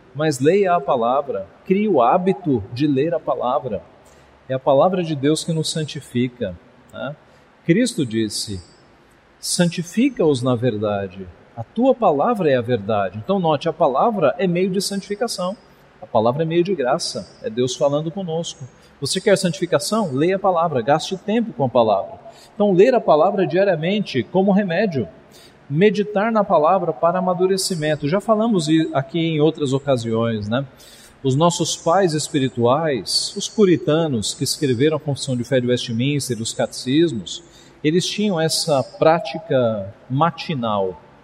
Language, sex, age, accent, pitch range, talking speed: Portuguese, male, 40-59, Brazilian, 130-185 Hz, 145 wpm